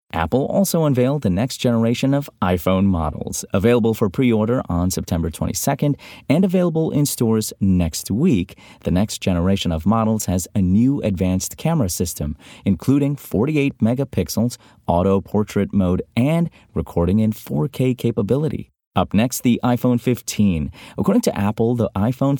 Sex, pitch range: male, 90-125 Hz